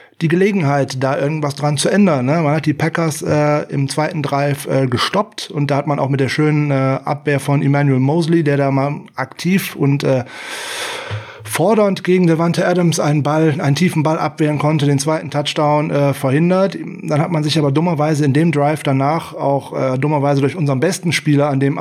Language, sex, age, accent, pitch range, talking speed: German, male, 30-49, German, 140-170 Hz, 200 wpm